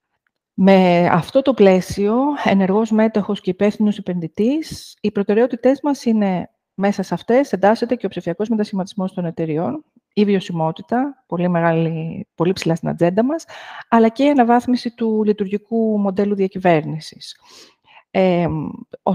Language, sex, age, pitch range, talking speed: Greek, female, 40-59, 180-230 Hz, 130 wpm